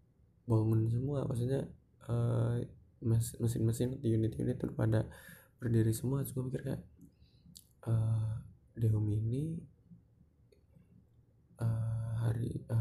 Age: 20-39